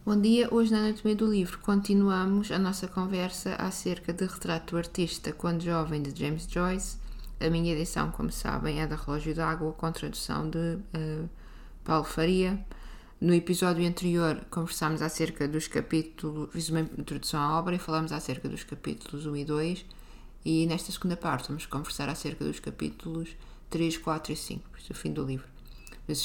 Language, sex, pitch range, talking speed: Portuguese, female, 140-170 Hz, 175 wpm